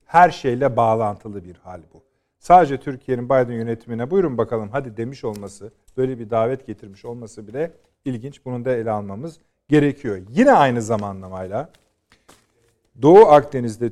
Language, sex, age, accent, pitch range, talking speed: Turkish, male, 50-69, native, 105-135 Hz, 140 wpm